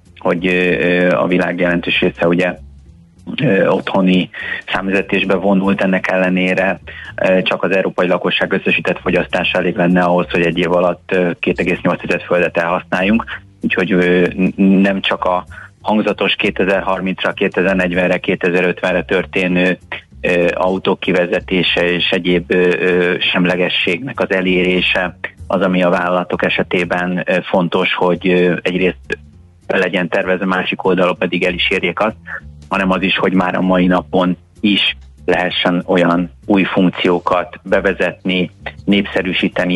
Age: 30-49